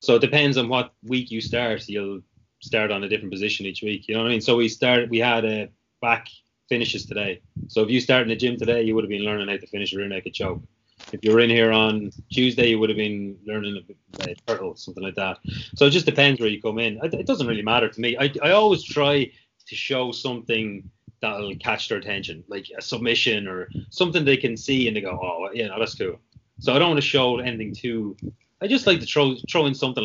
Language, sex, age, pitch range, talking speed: English, male, 20-39, 105-125 Hz, 250 wpm